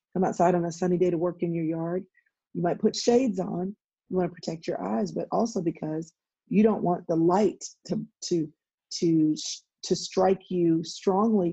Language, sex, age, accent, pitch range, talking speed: English, female, 40-59, American, 170-195 Hz, 195 wpm